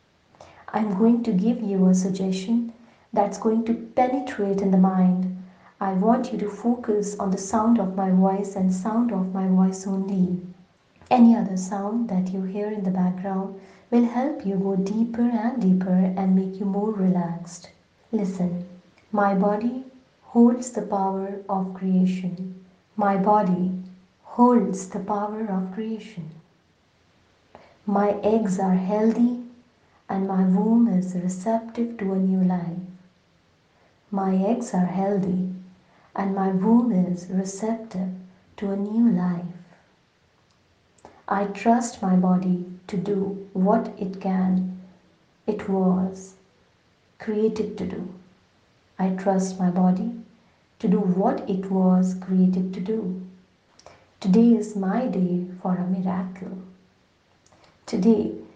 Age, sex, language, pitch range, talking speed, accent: 30-49, female, English, 185-215 Hz, 130 wpm, Indian